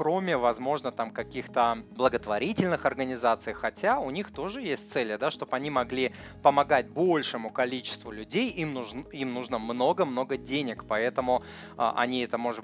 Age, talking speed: 20-39, 145 wpm